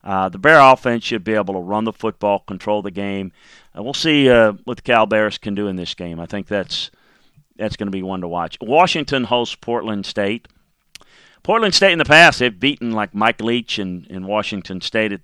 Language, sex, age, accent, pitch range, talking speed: English, male, 40-59, American, 100-120 Hz, 220 wpm